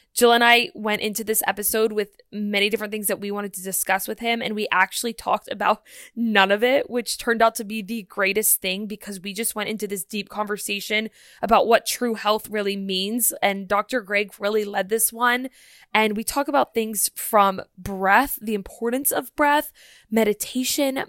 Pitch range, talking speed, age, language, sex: 205-235 Hz, 190 wpm, 20-39, English, female